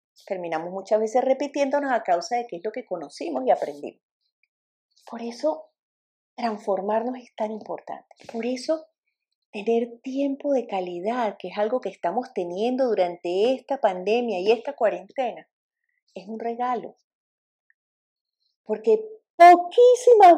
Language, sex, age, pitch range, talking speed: English, female, 40-59, 220-300 Hz, 125 wpm